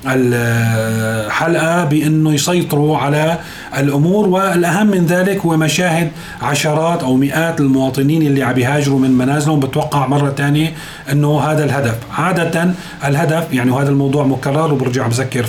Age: 40-59